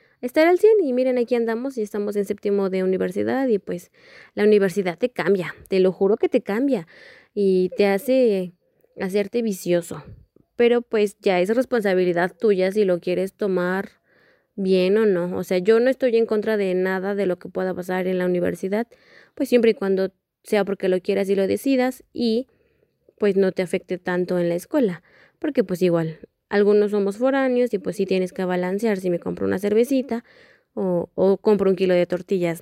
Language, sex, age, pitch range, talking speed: Spanish, female, 20-39, 190-230 Hz, 190 wpm